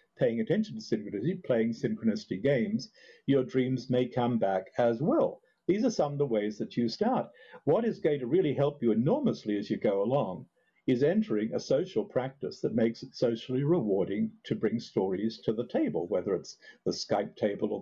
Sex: male